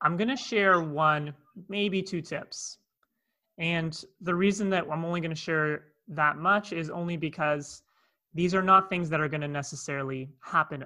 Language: English